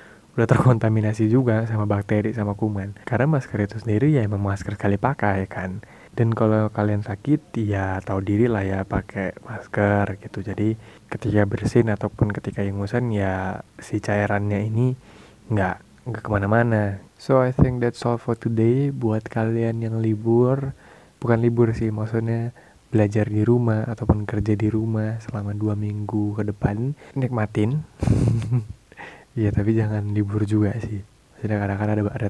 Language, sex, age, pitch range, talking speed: Indonesian, male, 20-39, 105-115 Hz, 145 wpm